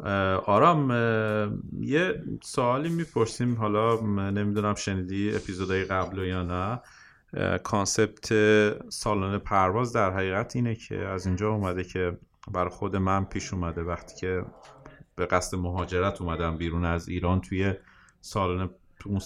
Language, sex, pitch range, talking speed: Persian, male, 85-105 Hz, 120 wpm